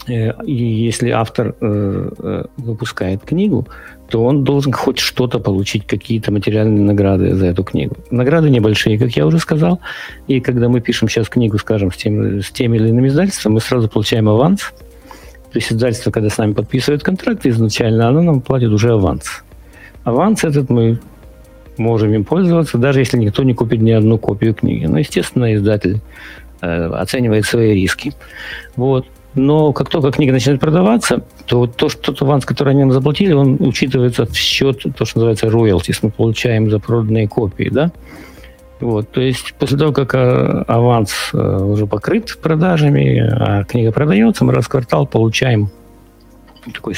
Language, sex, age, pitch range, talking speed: Russian, male, 50-69, 110-140 Hz, 160 wpm